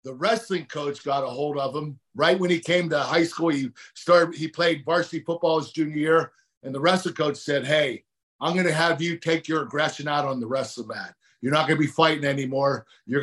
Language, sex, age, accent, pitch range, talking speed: English, male, 50-69, American, 140-175 Hz, 230 wpm